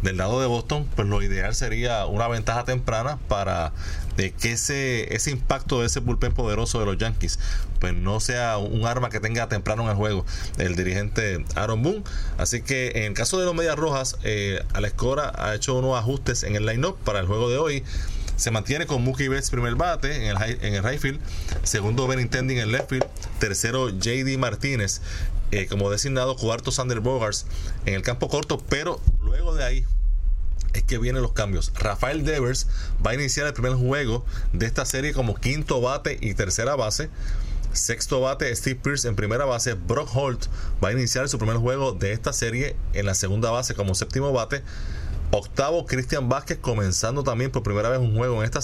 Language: English